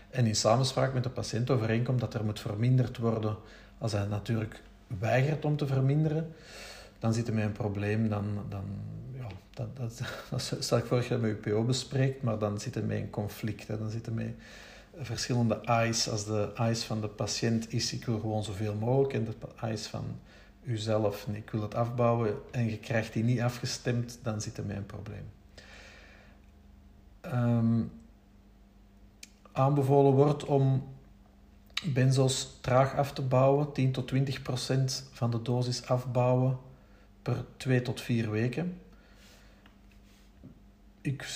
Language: Dutch